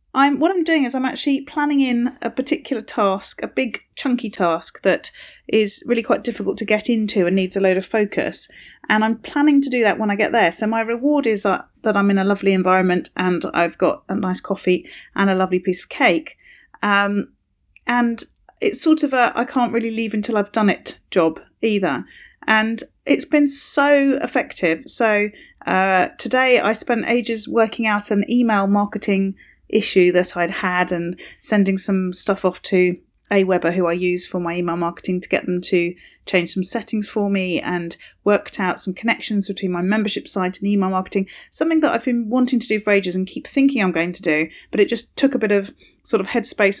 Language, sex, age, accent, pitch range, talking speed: English, female, 30-49, British, 185-235 Hz, 205 wpm